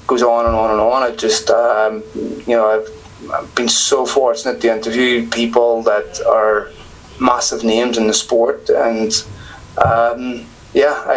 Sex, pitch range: male, 110-145 Hz